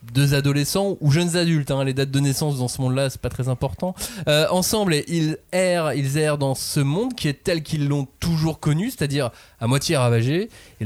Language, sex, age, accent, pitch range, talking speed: French, male, 20-39, French, 120-160 Hz, 210 wpm